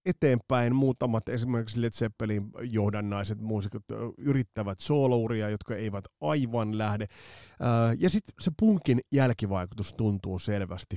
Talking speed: 110 wpm